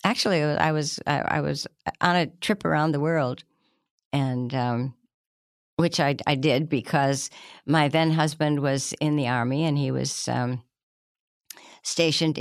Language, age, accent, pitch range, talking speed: English, 60-79, American, 135-165 Hz, 150 wpm